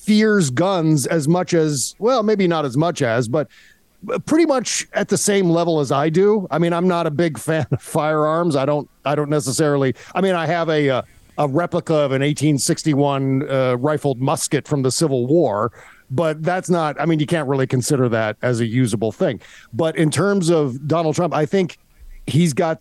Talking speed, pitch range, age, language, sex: 205 wpm, 140-175 Hz, 40-59, English, male